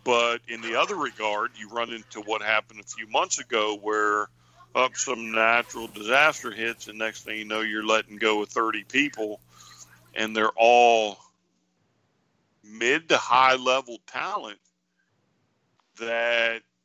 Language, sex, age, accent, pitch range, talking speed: English, male, 50-69, American, 105-115 Hz, 140 wpm